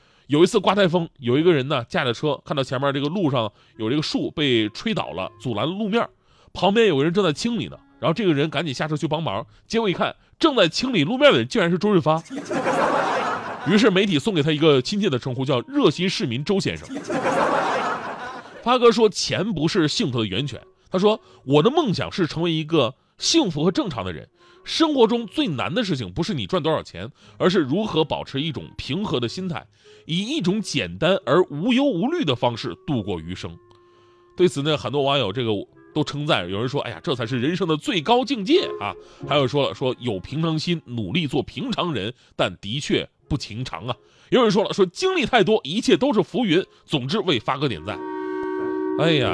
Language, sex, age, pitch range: Chinese, male, 30-49, 125-195 Hz